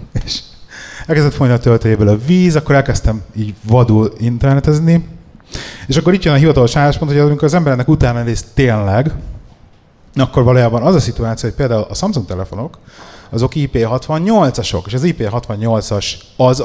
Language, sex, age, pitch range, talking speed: Hungarian, male, 30-49, 100-130 Hz, 150 wpm